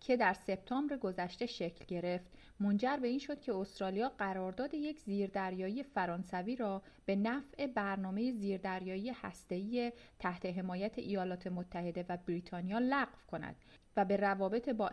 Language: Persian